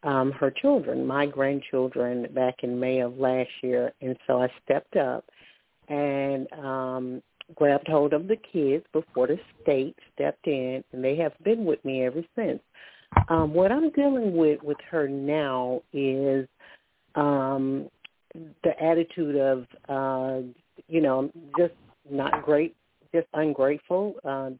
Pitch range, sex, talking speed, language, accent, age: 135-160 Hz, female, 140 wpm, English, American, 50-69